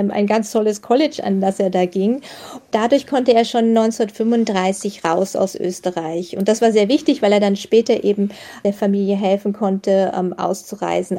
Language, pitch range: German, 190-225 Hz